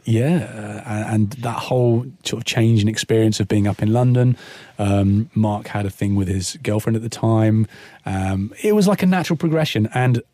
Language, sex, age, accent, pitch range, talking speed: English, male, 30-49, British, 105-125 Hz, 190 wpm